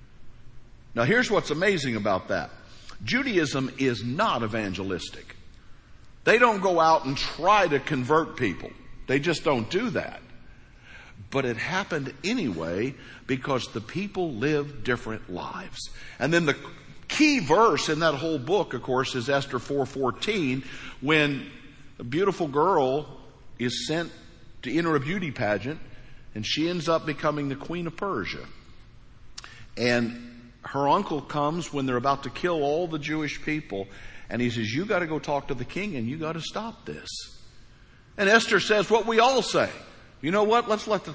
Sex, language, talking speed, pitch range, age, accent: male, English, 160 wpm, 120-165 Hz, 50-69, American